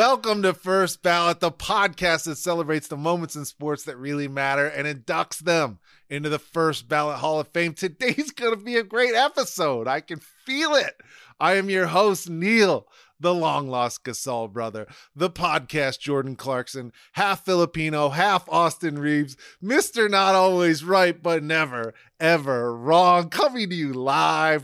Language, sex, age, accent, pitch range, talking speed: English, male, 30-49, American, 145-195 Hz, 160 wpm